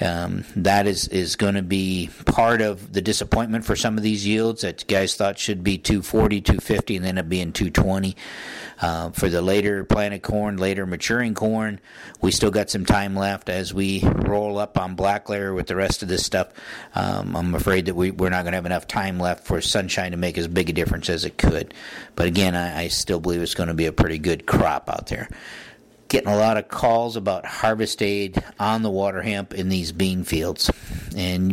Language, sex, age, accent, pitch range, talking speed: English, male, 50-69, American, 90-105 Hz, 215 wpm